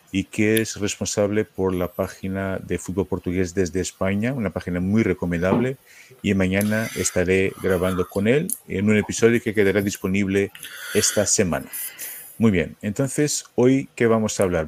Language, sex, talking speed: Spanish, male, 155 wpm